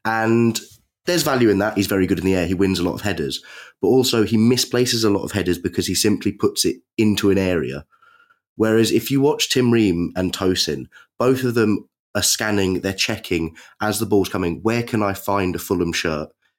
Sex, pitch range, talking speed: male, 85-110 Hz, 215 wpm